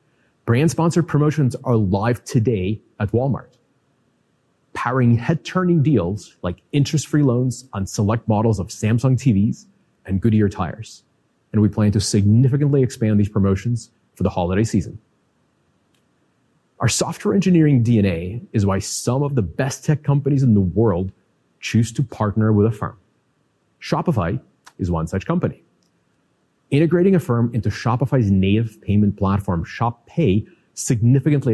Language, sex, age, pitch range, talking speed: English, male, 30-49, 105-140 Hz, 135 wpm